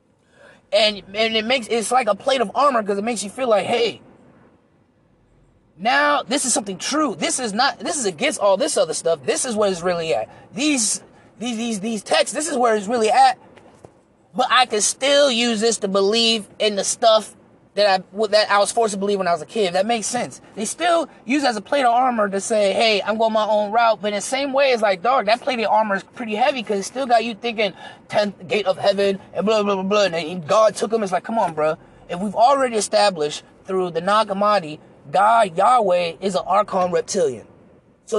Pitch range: 200-260 Hz